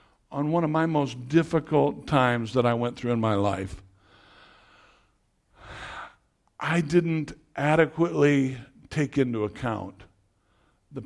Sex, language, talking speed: male, English, 115 wpm